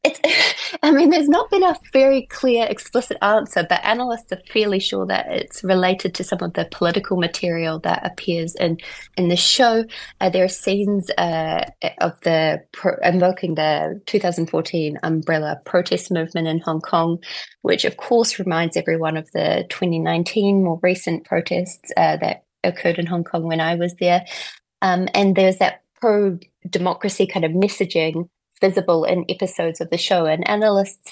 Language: English